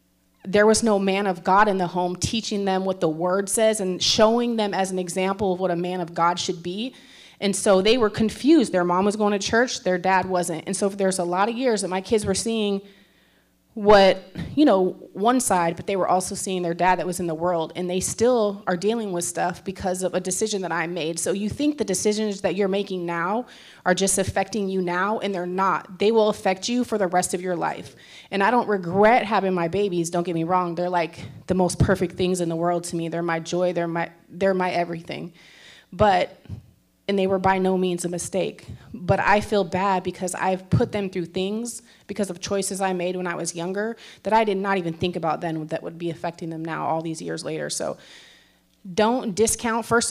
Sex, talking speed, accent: female, 230 wpm, American